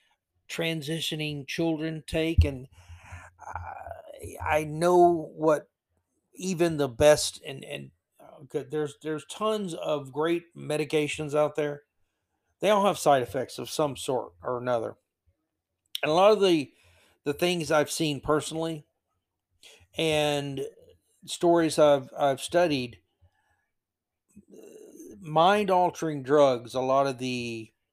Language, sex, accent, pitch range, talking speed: English, male, American, 120-160 Hz, 110 wpm